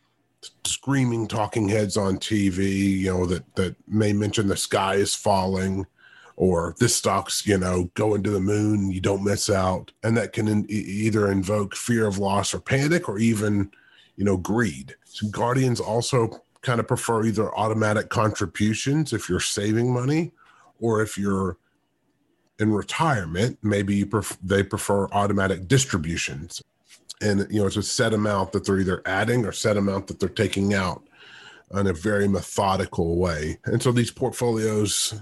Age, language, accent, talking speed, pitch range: 30-49, English, American, 165 wpm, 95-115 Hz